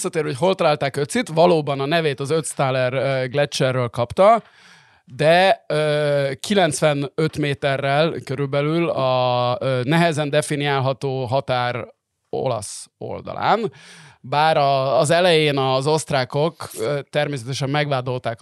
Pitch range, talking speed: 120-150 Hz, 95 wpm